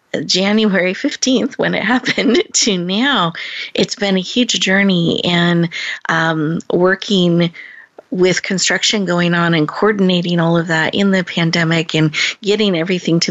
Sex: female